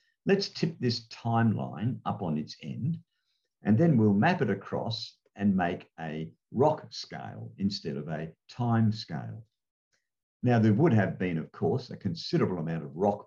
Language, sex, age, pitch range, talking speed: English, male, 50-69, 85-120 Hz, 165 wpm